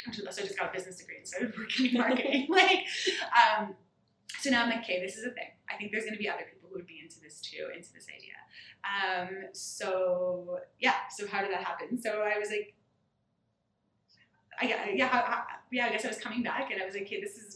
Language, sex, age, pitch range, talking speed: English, female, 20-39, 180-235 Hz, 240 wpm